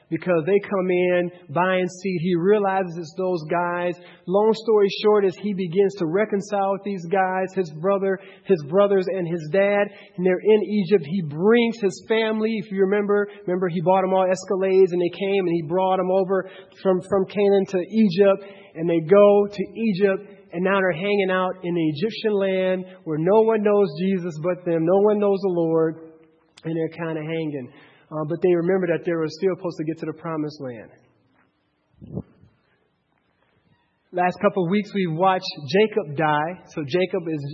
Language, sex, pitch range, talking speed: English, male, 170-195 Hz, 185 wpm